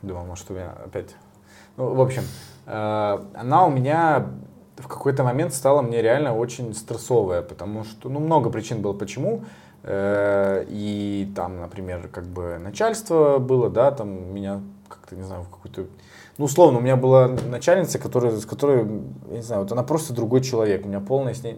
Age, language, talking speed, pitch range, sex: 20-39, Russian, 180 wpm, 100-130 Hz, male